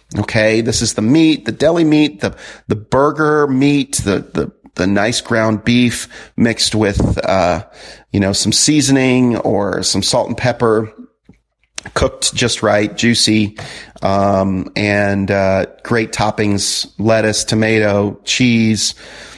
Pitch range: 105-130 Hz